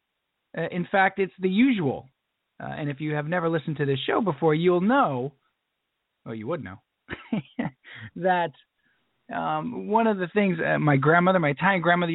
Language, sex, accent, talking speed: English, male, American, 170 wpm